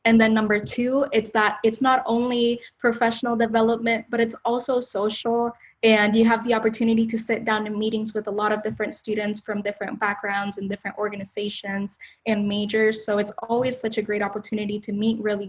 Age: 10-29